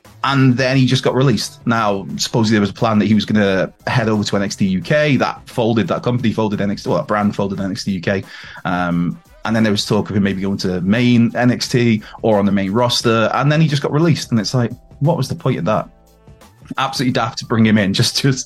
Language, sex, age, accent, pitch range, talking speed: English, male, 20-39, British, 100-135 Hz, 245 wpm